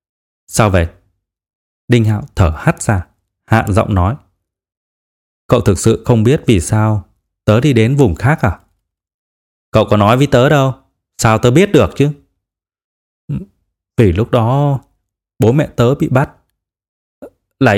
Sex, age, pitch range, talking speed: male, 20-39, 90-125 Hz, 145 wpm